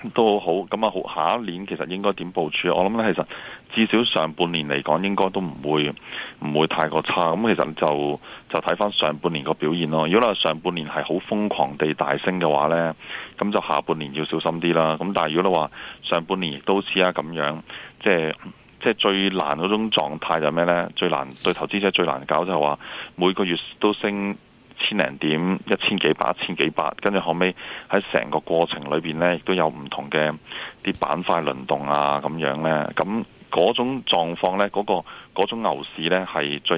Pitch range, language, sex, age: 75-95 Hz, Chinese, male, 20-39